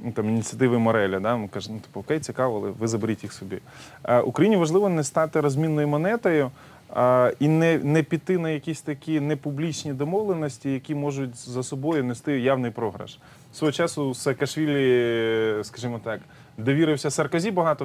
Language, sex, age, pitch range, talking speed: Ukrainian, male, 20-39, 120-150 Hz, 160 wpm